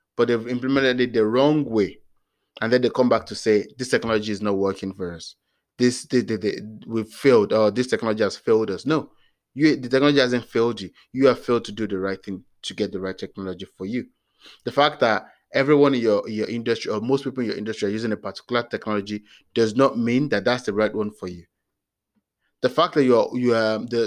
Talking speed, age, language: 215 wpm, 20-39, English